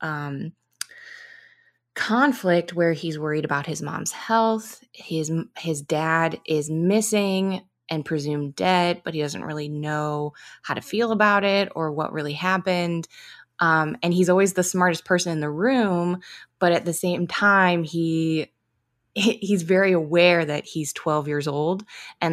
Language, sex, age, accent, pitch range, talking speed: English, female, 20-39, American, 155-190 Hz, 150 wpm